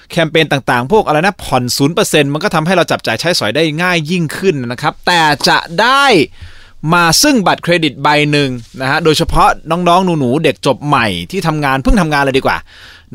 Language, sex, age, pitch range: Thai, male, 20-39, 125-175 Hz